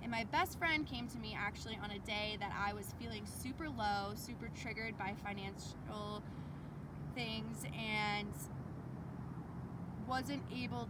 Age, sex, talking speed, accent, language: 20-39, female, 140 wpm, American, English